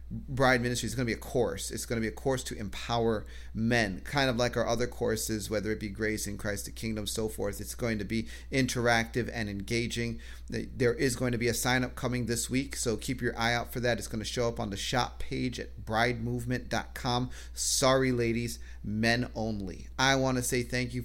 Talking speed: 225 wpm